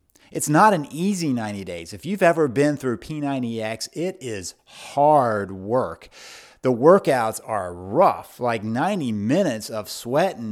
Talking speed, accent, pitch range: 145 wpm, American, 120-150 Hz